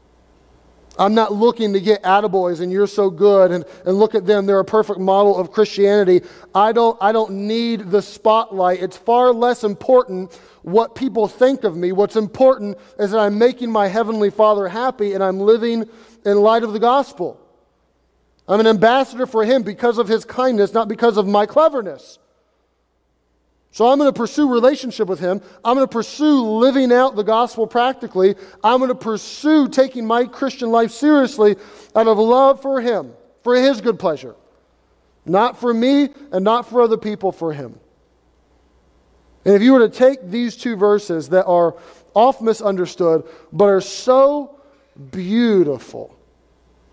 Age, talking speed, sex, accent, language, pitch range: 40-59, 165 wpm, male, American, English, 185-240 Hz